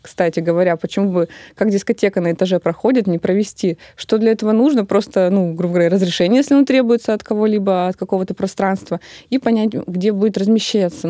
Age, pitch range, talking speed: 20-39, 180-220 Hz, 180 wpm